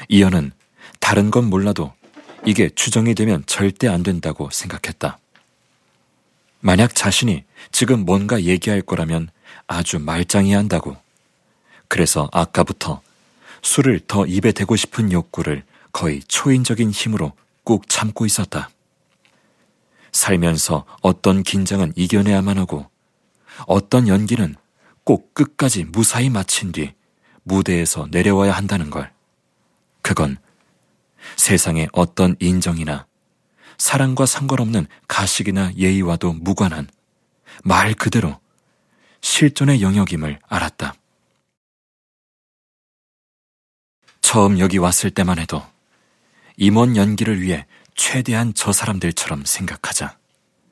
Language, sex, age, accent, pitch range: Korean, male, 40-59, native, 90-115 Hz